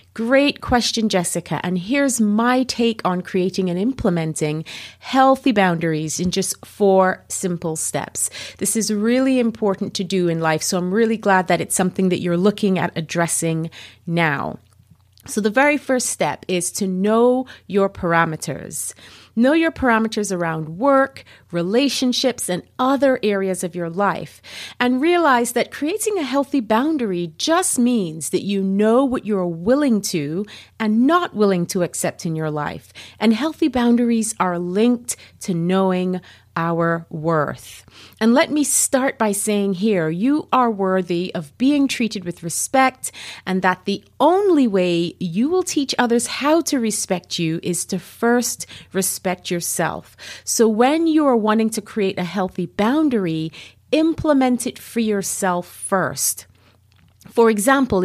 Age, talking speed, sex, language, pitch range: 30-49, 150 wpm, female, English, 175-250 Hz